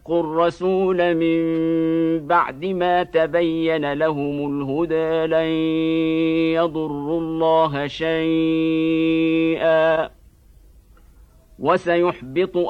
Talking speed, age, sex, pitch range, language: 60 wpm, 50-69, male, 160-190 Hz, Indonesian